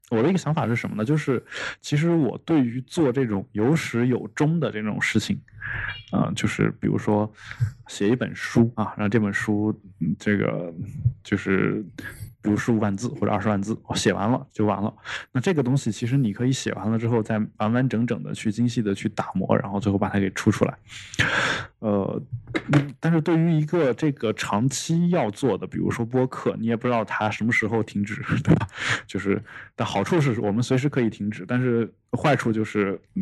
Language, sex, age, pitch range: Chinese, male, 20-39, 105-130 Hz